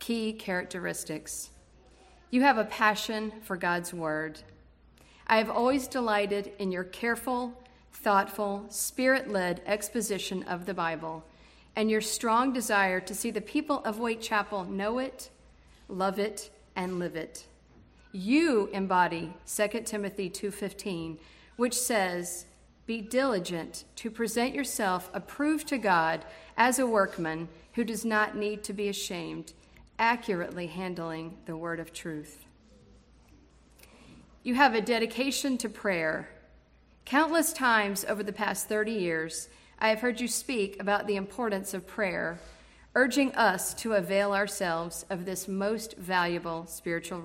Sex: female